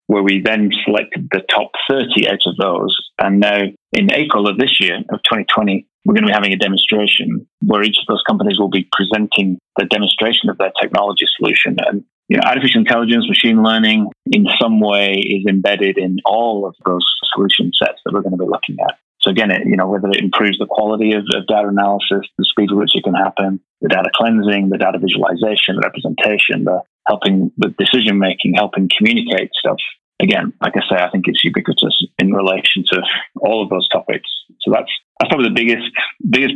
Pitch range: 100-110 Hz